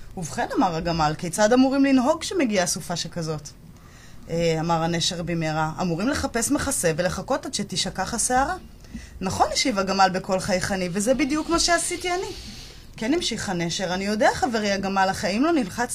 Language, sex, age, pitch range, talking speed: Hebrew, female, 20-39, 175-270 Hz, 160 wpm